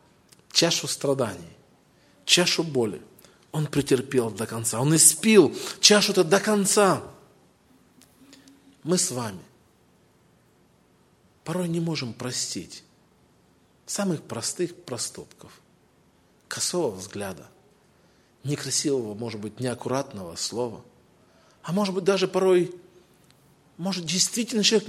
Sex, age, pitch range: male, 40-59, 135-210 Hz